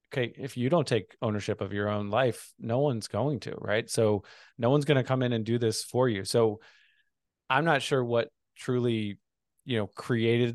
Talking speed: 205 wpm